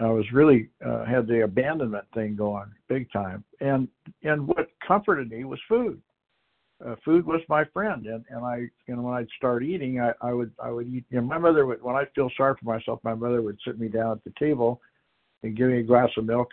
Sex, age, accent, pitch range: male, 60-79, American, 110-135 Hz